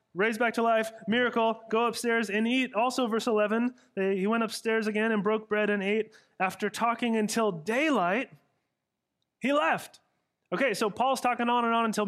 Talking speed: 180 wpm